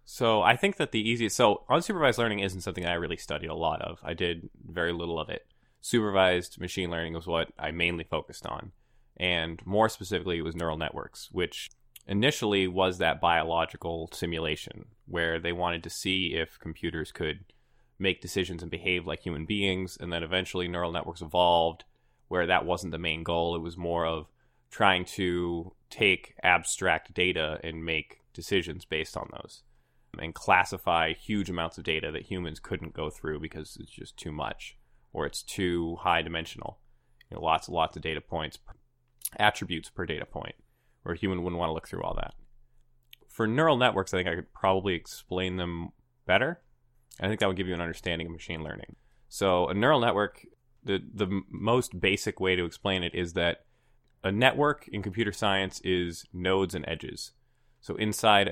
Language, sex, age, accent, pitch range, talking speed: English, male, 20-39, American, 85-105 Hz, 180 wpm